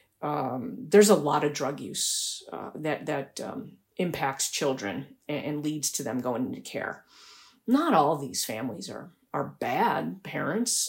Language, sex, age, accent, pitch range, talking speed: English, female, 40-59, American, 150-225 Hz, 155 wpm